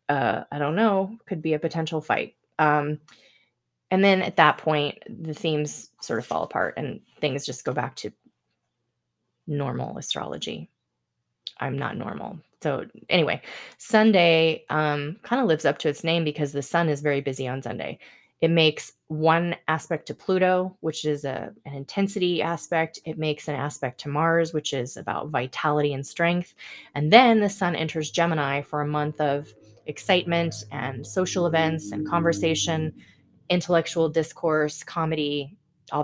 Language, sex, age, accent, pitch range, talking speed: English, female, 20-39, American, 145-170 Hz, 155 wpm